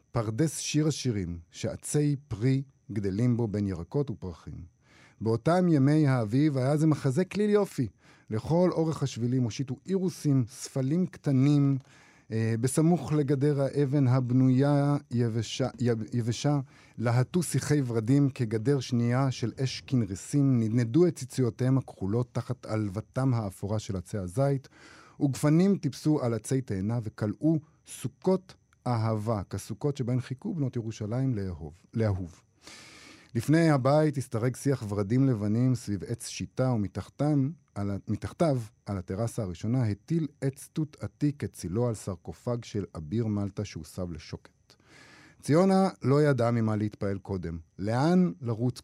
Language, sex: Hebrew, male